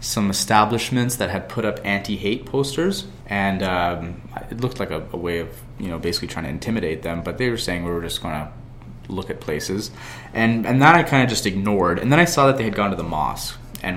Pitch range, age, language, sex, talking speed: 85-120 Hz, 20-39, English, male, 240 wpm